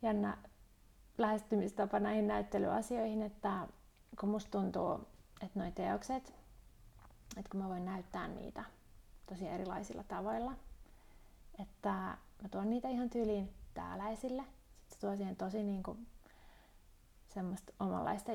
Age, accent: 30-49, native